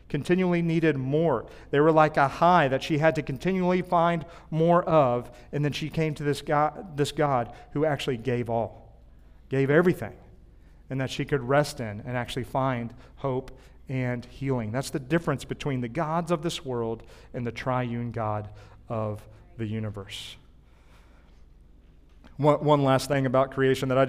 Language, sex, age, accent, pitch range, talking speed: English, male, 40-59, American, 125-160 Hz, 165 wpm